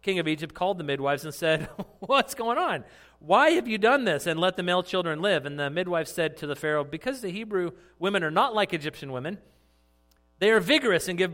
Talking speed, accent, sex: 230 wpm, American, male